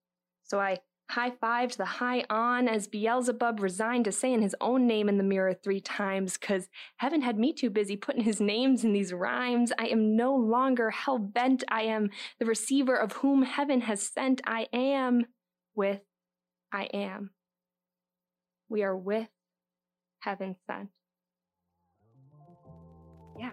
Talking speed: 145 wpm